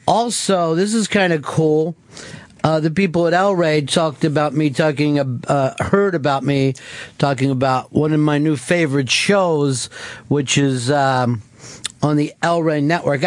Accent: American